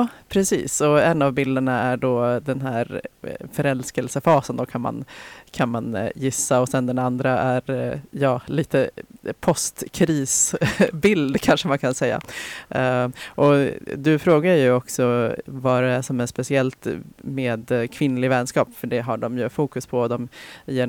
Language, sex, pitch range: Swedish, female, 125-140 Hz